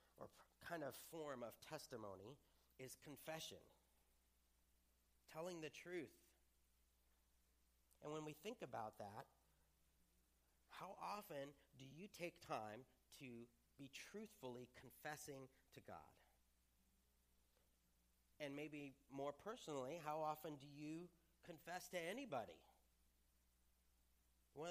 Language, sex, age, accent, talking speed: English, male, 40-59, American, 100 wpm